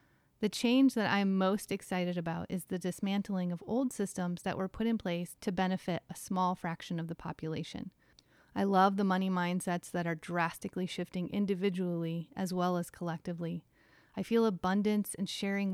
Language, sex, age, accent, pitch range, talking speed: English, female, 30-49, American, 175-210 Hz, 170 wpm